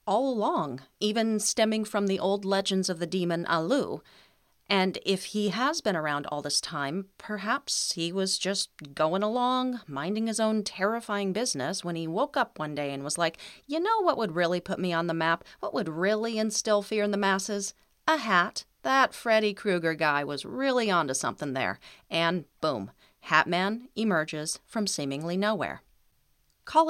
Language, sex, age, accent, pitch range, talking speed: English, female, 40-59, American, 165-210 Hz, 175 wpm